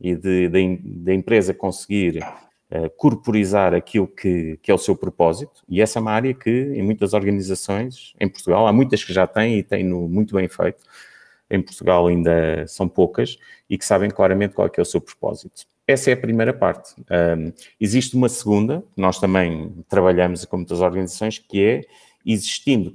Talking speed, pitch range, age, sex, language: 180 wpm, 95-115 Hz, 30-49, male, English